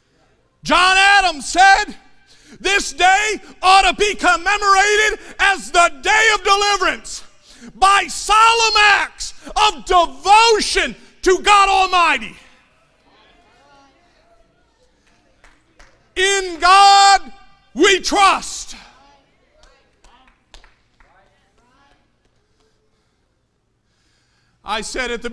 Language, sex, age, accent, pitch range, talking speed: English, male, 50-69, American, 260-375 Hz, 70 wpm